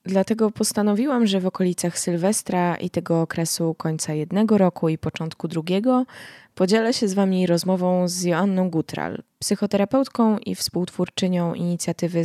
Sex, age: female, 20-39